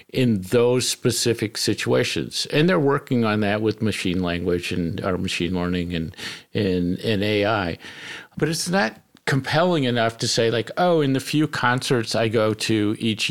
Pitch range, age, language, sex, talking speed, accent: 105-135 Hz, 50-69, English, male, 160 wpm, American